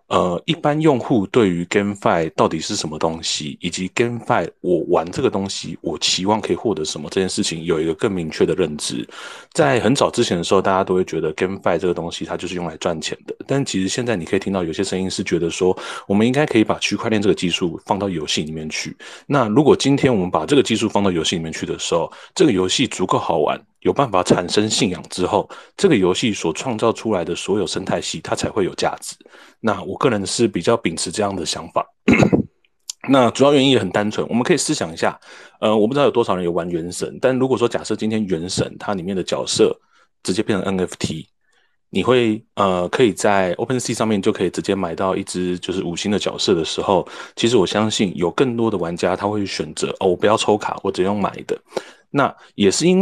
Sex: male